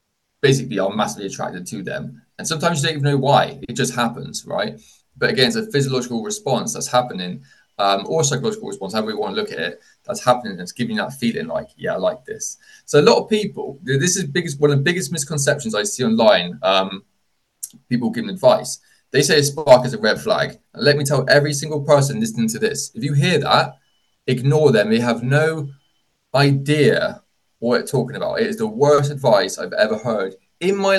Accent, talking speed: British, 215 wpm